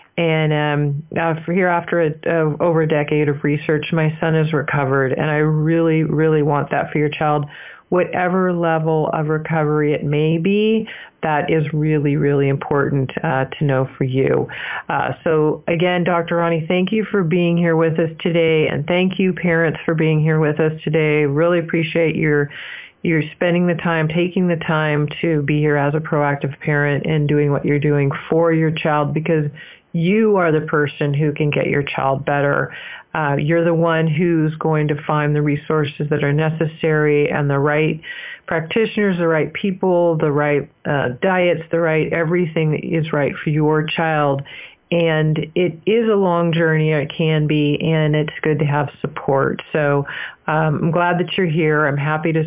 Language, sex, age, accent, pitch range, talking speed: English, female, 40-59, American, 150-170 Hz, 185 wpm